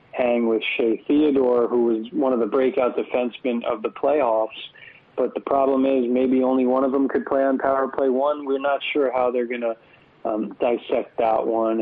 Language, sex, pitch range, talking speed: English, male, 115-130 Hz, 200 wpm